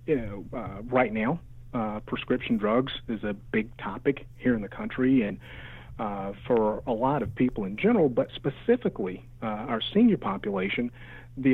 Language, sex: English, male